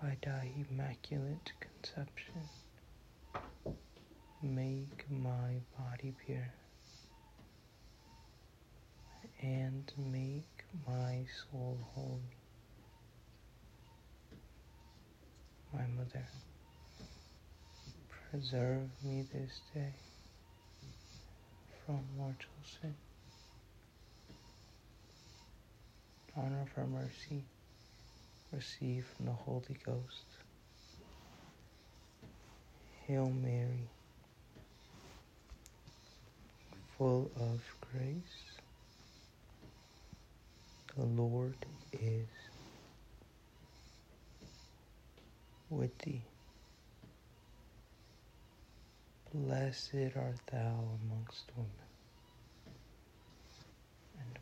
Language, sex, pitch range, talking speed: English, male, 115-135 Hz, 50 wpm